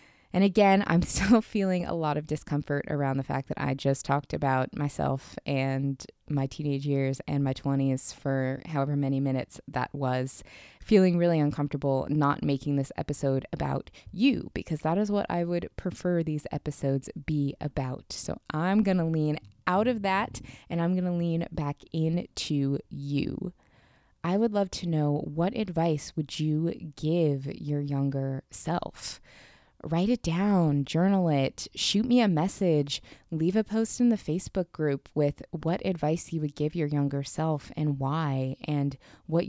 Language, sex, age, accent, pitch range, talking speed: English, female, 20-39, American, 140-175 Hz, 165 wpm